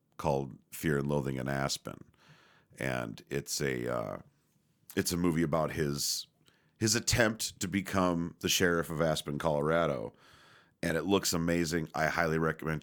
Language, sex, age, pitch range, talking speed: English, male, 40-59, 75-95 Hz, 145 wpm